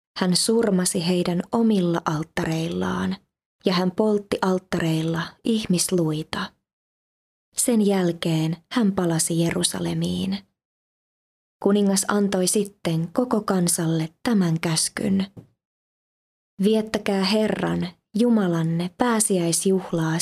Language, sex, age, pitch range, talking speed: Finnish, female, 20-39, 170-200 Hz, 75 wpm